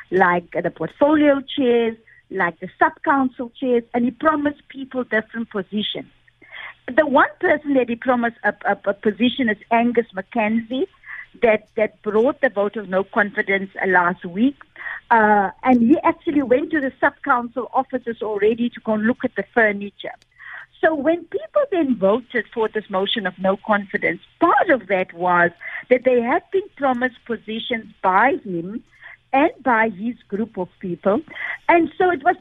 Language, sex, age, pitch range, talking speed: English, female, 50-69, 215-295 Hz, 160 wpm